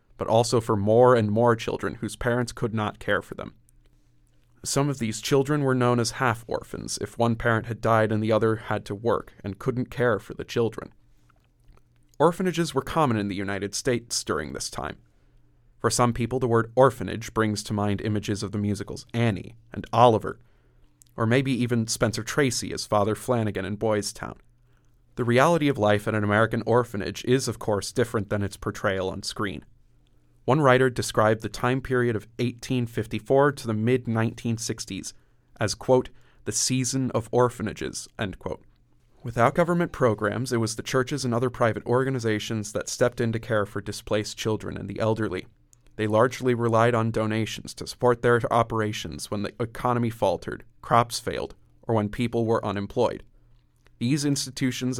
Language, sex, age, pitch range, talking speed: English, male, 30-49, 105-125 Hz, 170 wpm